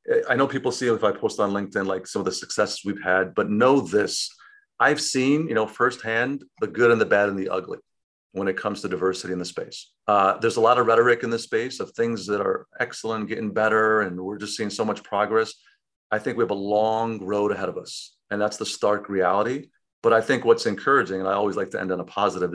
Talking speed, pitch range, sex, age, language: 245 wpm, 100-125 Hz, male, 40-59, English